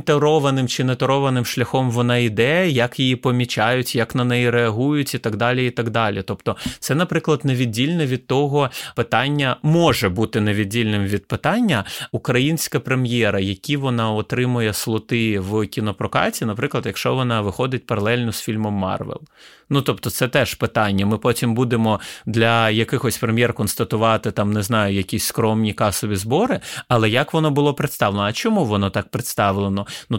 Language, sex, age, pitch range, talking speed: Ukrainian, male, 30-49, 110-135 Hz, 155 wpm